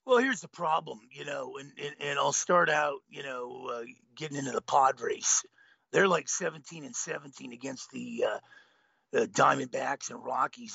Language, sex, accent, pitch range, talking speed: English, male, American, 150-210 Hz, 175 wpm